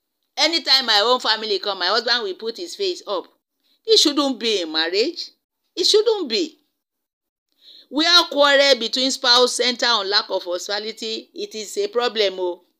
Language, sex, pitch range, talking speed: English, female, 210-305 Hz, 160 wpm